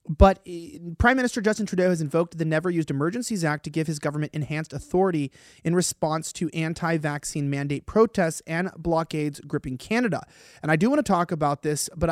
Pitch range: 155-200 Hz